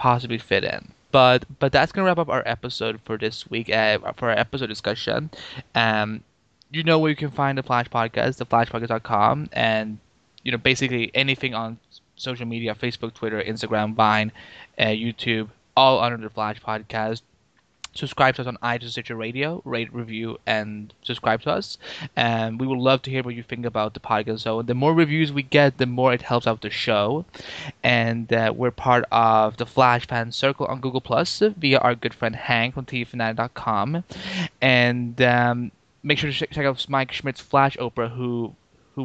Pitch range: 115-135 Hz